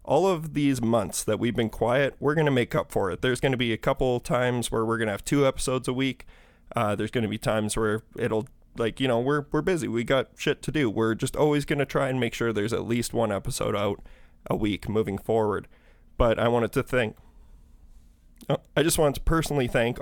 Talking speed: 245 wpm